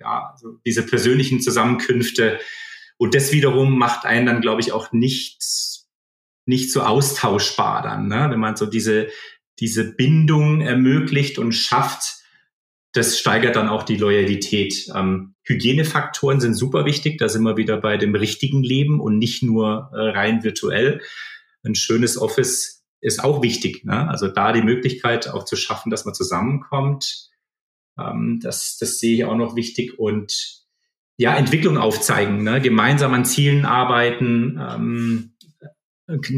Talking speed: 135 wpm